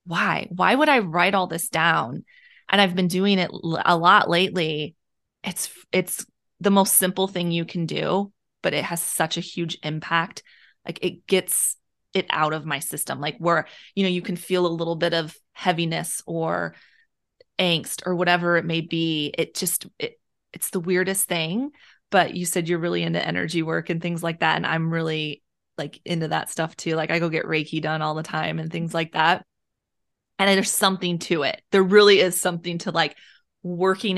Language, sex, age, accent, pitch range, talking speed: English, female, 20-39, American, 165-185 Hz, 200 wpm